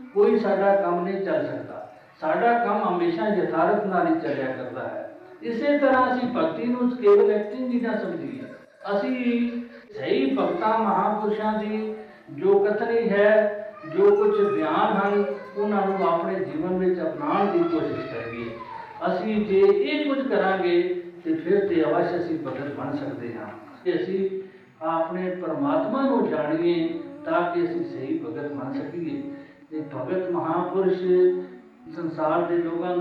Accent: native